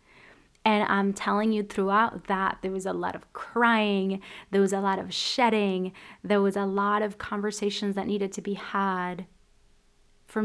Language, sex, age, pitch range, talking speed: English, female, 20-39, 195-215 Hz, 170 wpm